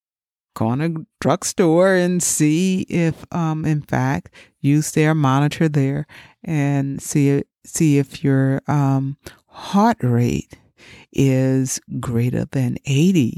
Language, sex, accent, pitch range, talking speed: English, female, American, 130-165 Hz, 115 wpm